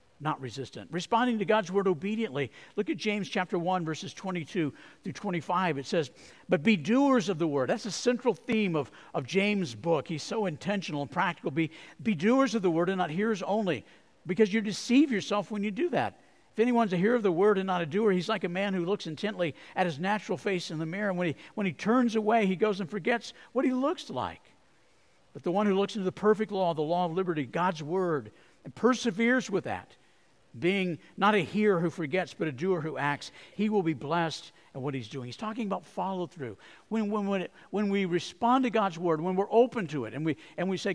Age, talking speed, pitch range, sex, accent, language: 50-69, 230 wpm, 165-215 Hz, male, American, English